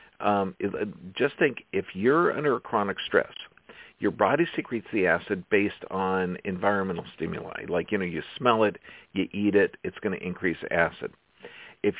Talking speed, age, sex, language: 165 wpm, 50-69, male, English